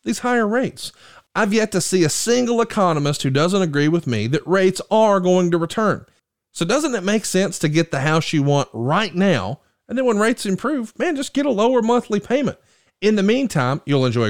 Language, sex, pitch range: English, male, 150-225 Hz